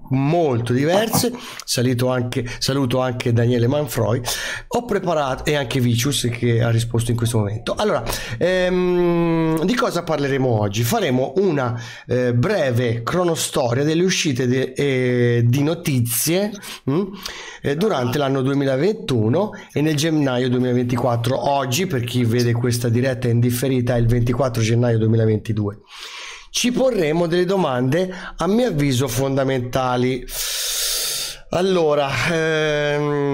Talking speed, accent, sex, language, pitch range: 120 wpm, native, male, Italian, 120-155 Hz